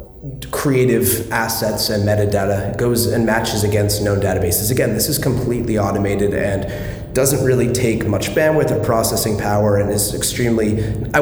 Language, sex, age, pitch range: English, male, 30-49, 100-120 Hz